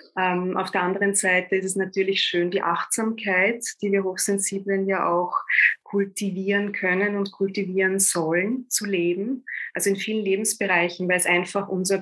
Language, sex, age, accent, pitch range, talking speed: German, female, 20-39, German, 175-200 Hz, 155 wpm